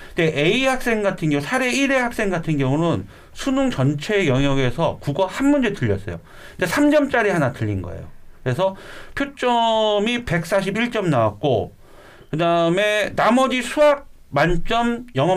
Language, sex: Korean, male